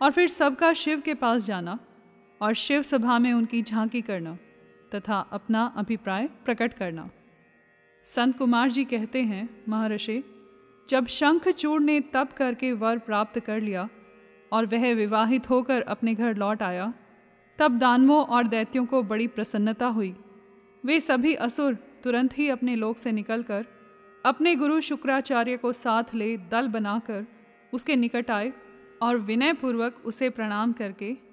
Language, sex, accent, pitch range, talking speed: Hindi, female, native, 210-260 Hz, 145 wpm